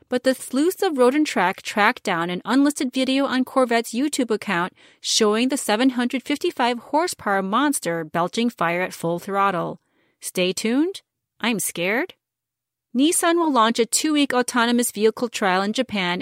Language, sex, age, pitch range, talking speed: English, female, 30-49, 200-275 Hz, 140 wpm